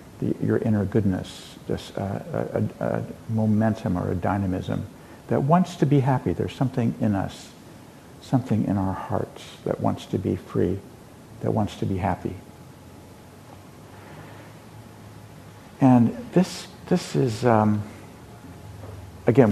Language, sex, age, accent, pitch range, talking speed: English, male, 60-79, American, 95-120 Hz, 125 wpm